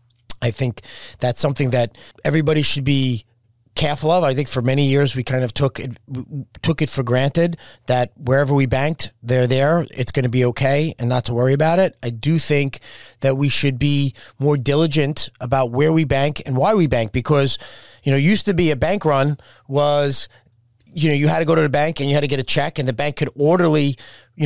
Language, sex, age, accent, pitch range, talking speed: English, male, 30-49, American, 130-155 Hz, 220 wpm